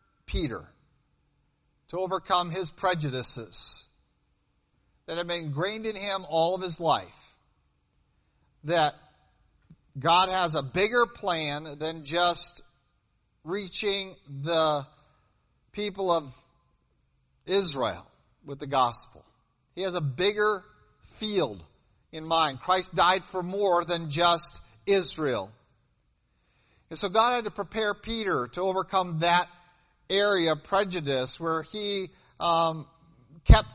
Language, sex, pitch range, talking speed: English, male, 145-190 Hz, 110 wpm